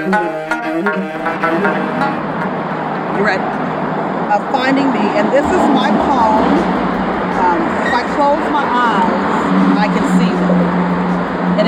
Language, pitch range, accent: English, 200-235 Hz, American